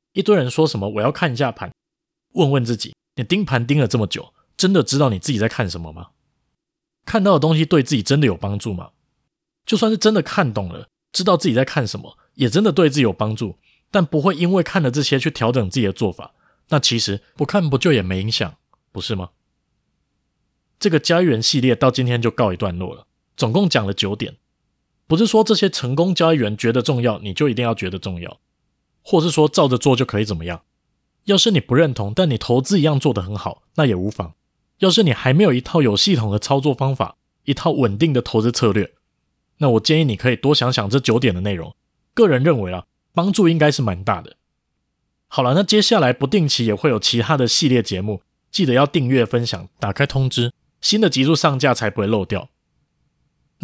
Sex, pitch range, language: male, 110-160 Hz, Chinese